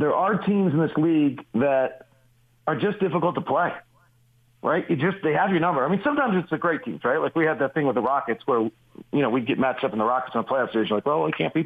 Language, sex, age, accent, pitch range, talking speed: English, male, 40-59, American, 140-180 Hz, 285 wpm